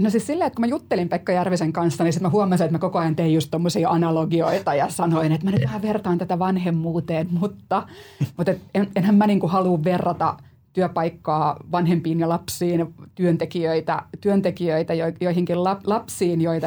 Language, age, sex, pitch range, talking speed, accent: Finnish, 30-49, female, 165-195 Hz, 170 wpm, native